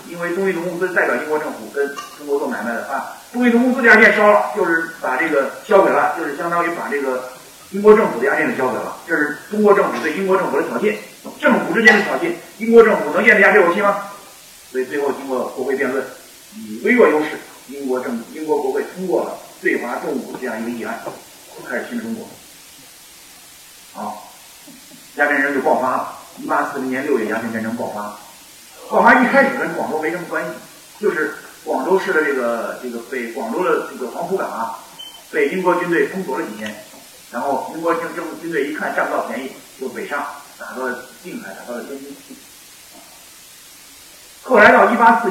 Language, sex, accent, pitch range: Chinese, male, native, 135-210 Hz